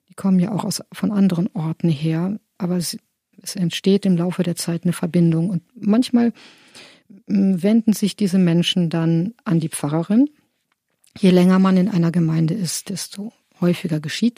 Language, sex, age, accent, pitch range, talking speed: German, female, 50-69, German, 170-205 Hz, 160 wpm